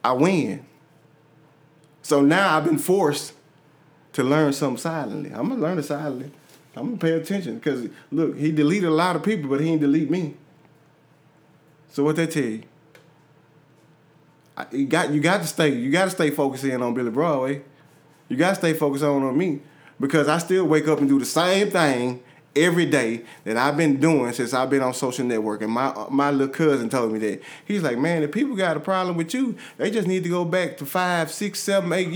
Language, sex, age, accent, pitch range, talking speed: English, male, 30-49, American, 145-175 Hz, 200 wpm